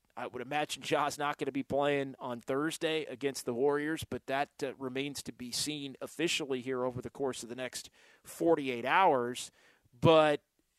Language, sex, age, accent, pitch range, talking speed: English, male, 40-59, American, 140-180 Hz, 180 wpm